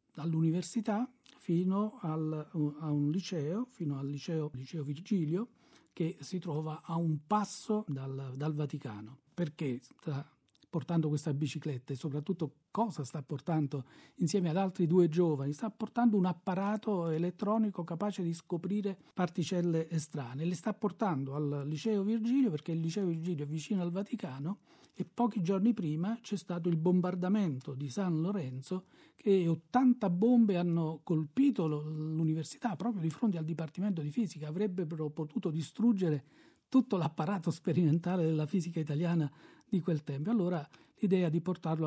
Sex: male